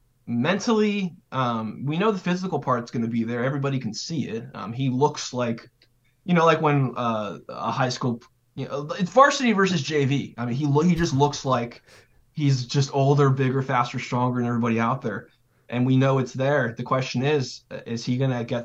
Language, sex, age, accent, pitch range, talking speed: English, male, 20-39, American, 120-145 Hz, 205 wpm